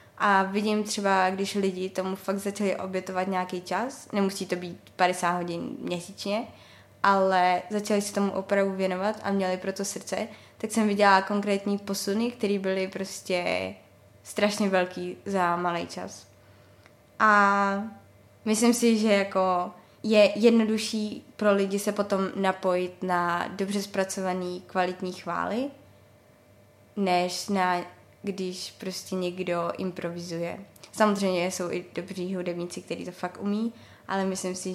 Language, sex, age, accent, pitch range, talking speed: Czech, female, 20-39, native, 180-200 Hz, 130 wpm